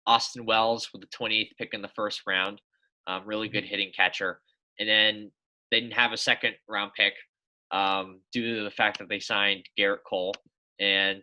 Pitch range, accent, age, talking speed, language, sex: 100-135 Hz, American, 20-39, 185 wpm, English, male